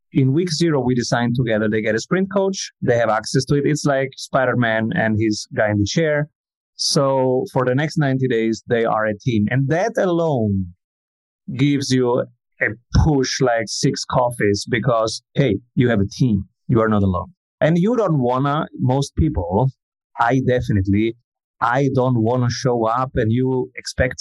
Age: 30-49